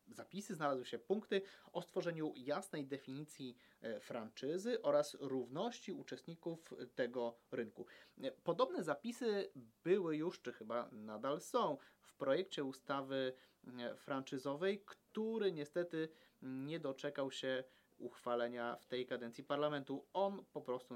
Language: Polish